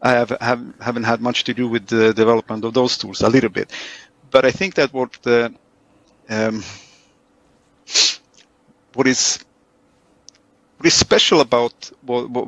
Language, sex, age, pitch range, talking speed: English, male, 50-69, 115-135 Hz, 150 wpm